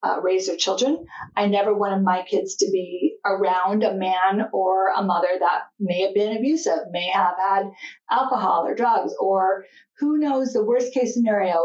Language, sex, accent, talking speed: English, female, American, 180 wpm